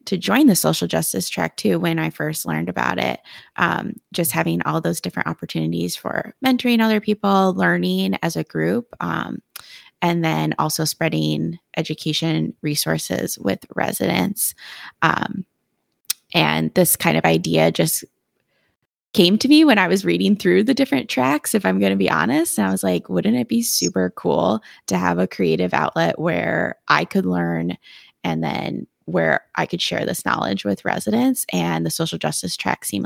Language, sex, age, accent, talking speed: English, female, 20-39, American, 170 wpm